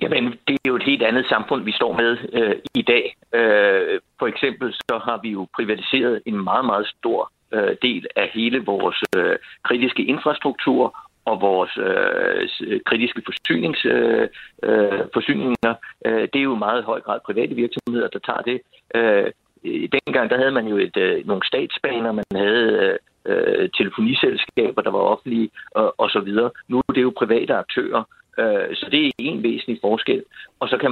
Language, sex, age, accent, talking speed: Danish, male, 60-79, native, 170 wpm